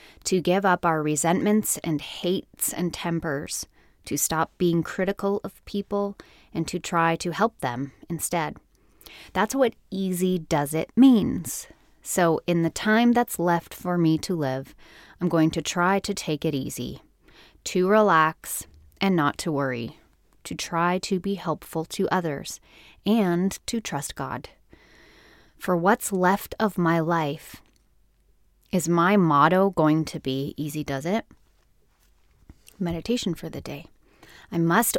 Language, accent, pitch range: English, American, 155-195 Hz